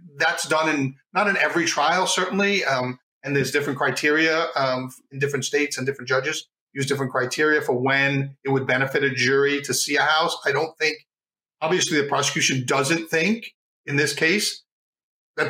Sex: male